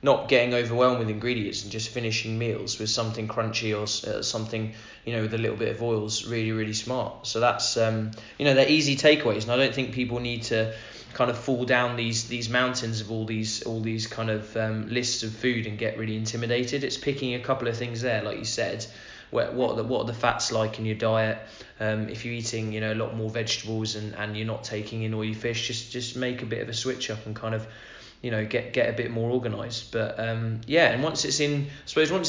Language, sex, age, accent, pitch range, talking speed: English, male, 20-39, British, 110-125 Hz, 245 wpm